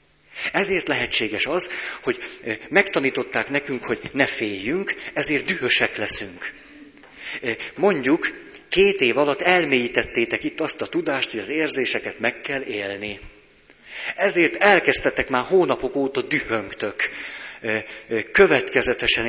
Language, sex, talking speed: Hungarian, male, 105 wpm